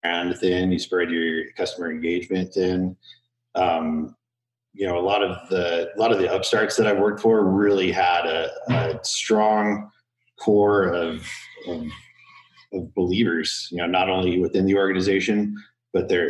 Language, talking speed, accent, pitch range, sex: English, 160 wpm, American, 85-105 Hz, male